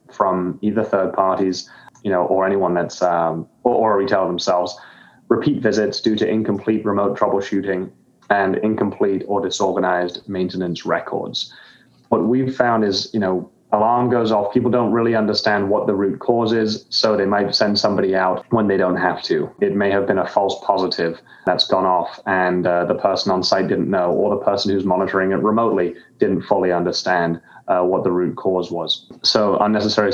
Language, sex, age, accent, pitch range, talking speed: English, male, 20-39, British, 95-110 Hz, 180 wpm